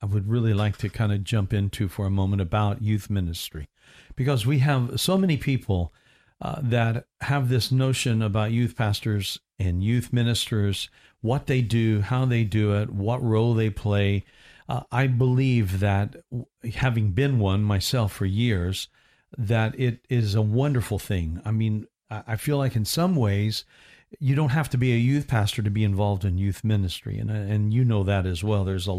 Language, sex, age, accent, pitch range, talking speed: English, male, 50-69, American, 105-125 Hz, 185 wpm